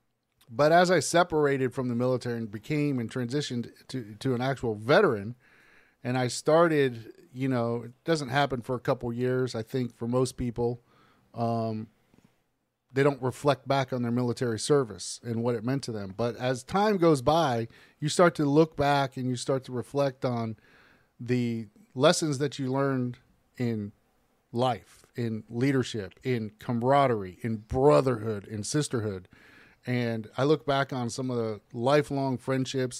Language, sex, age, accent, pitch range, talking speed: English, male, 40-59, American, 120-140 Hz, 165 wpm